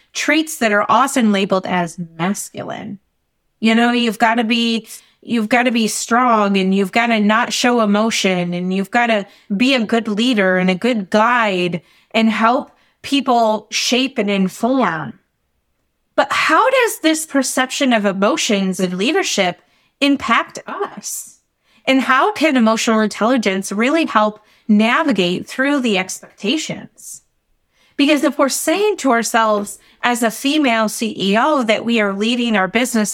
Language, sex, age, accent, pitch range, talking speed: English, female, 30-49, American, 200-260 Hz, 145 wpm